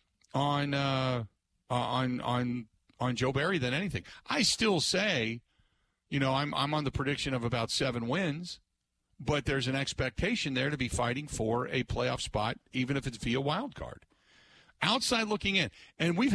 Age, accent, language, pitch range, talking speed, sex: 50-69, American, English, 120-155 Hz, 170 wpm, male